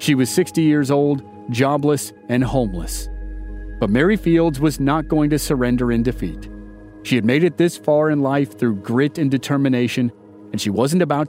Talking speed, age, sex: 180 wpm, 40-59, male